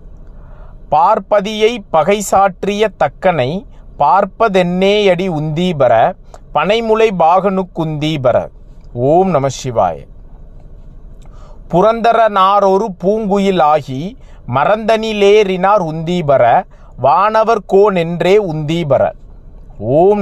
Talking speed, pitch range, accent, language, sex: 55 wpm, 165-215 Hz, native, Tamil, male